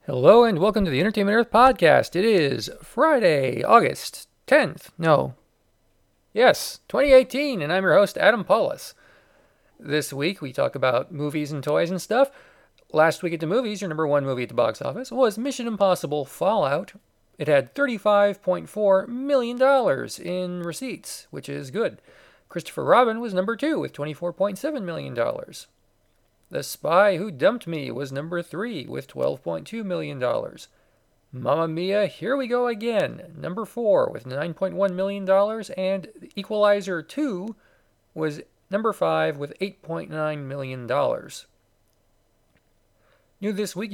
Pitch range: 155-230 Hz